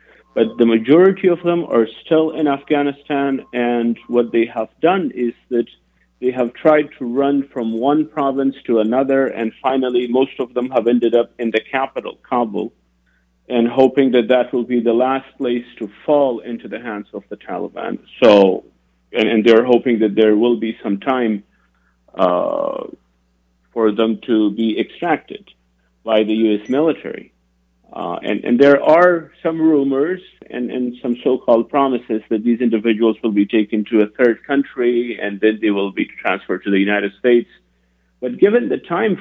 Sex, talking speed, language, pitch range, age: male, 170 wpm, English, 100-135 Hz, 50-69